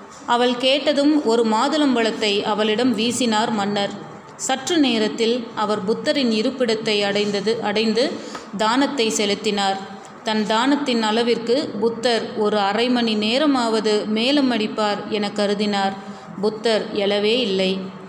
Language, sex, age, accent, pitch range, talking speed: Tamil, female, 30-49, native, 210-235 Hz, 100 wpm